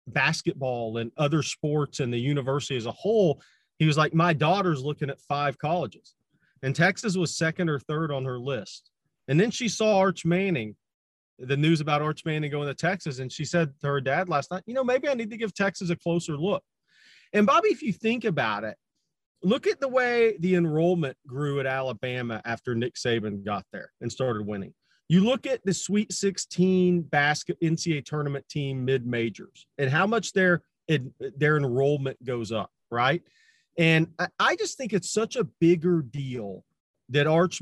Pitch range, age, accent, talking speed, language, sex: 135-185 Hz, 40-59, American, 185 wpm, English, male